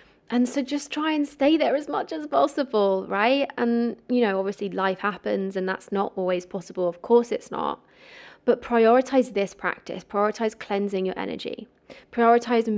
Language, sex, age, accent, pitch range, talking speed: English, female, 20-39, British, 200-240 Hz, 170 wpm